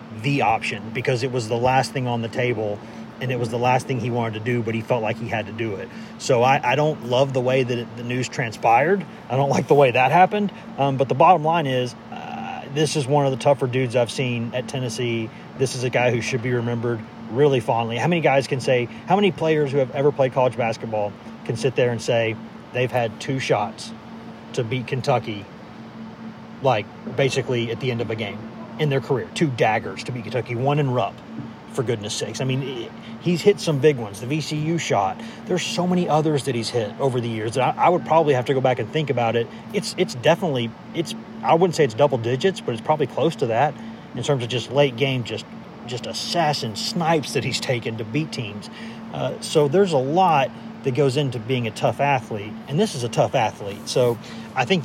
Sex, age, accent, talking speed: male, 30-49, American, 230 wpm